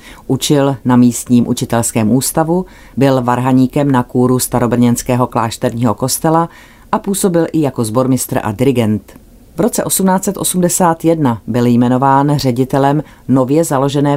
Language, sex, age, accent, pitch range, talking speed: Czech, female, 30-49, native, 125-145 Hz, 115 wpm